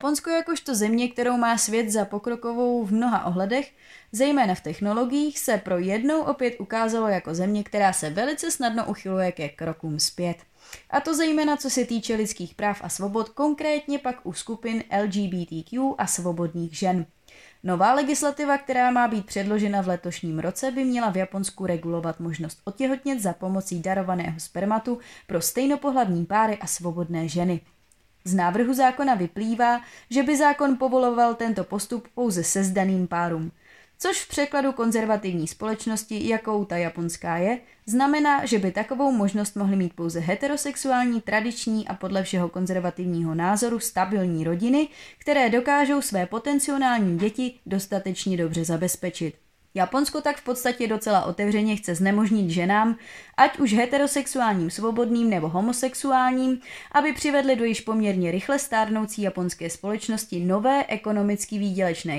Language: Czech